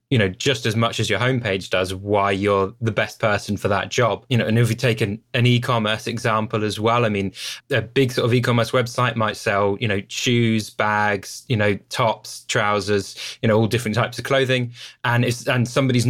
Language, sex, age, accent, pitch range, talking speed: English, male, 20-39, British, 100-120 Hz, 215 wpm